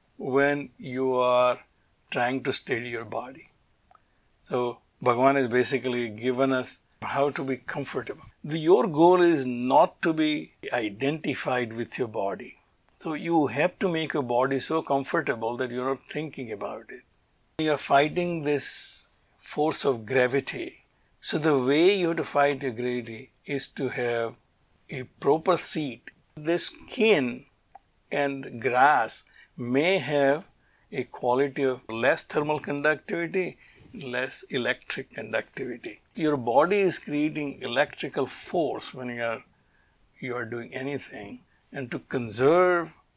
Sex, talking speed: male, 135 wpm